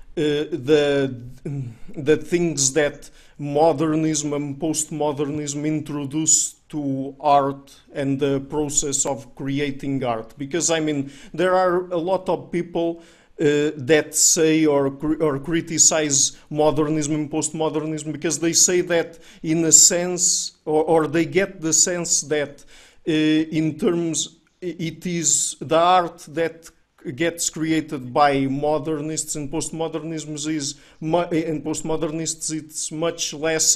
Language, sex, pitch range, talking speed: English, male, 145-165 Hz, 125 wpm